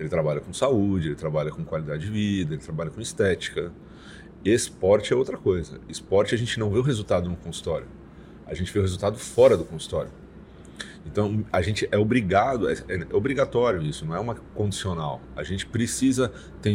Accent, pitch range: Brazilian, 90-105 Hz